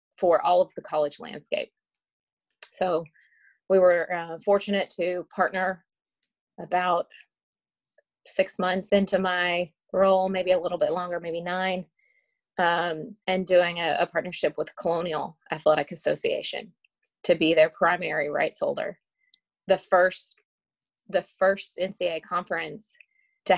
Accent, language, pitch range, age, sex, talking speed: American, English, 165-200 Hz, 30-49, female, 125 wpm